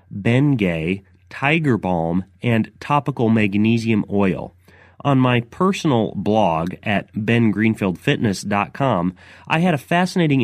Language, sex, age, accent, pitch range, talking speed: English, male, 30-49, American, 105-135 Hz, 100 wpm